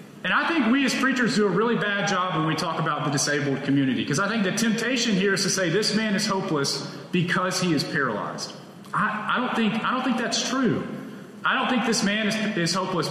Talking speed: 240 wpm